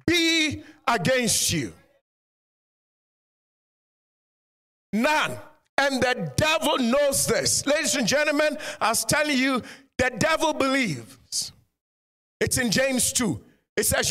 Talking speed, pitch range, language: 105 wpm, 230-310 Hz, English